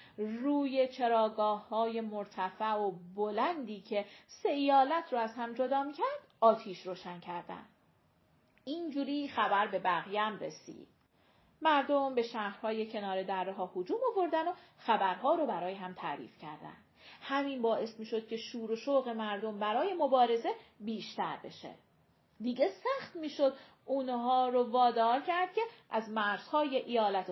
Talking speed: 135 wpm